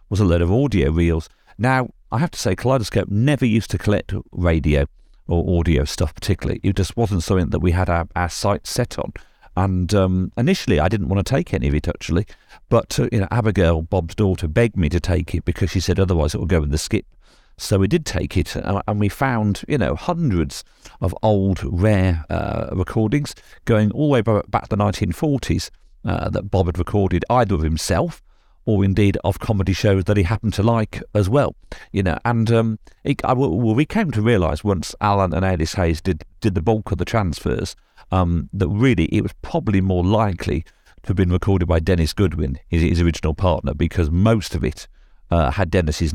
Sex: male